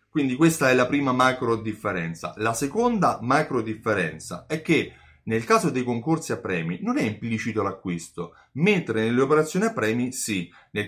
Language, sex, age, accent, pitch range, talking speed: Italian, male, 30-49, native, 110-150 Hz, 165 wpm